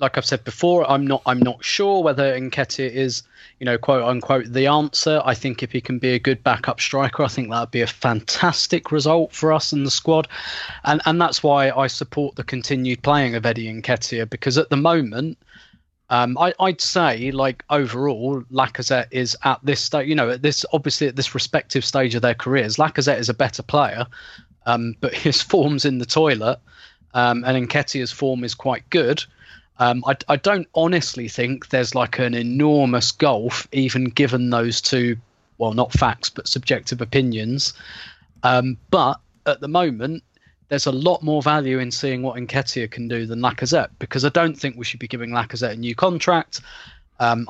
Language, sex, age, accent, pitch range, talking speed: English, male, 20-39, British, 125-145 Hz, 190 wpm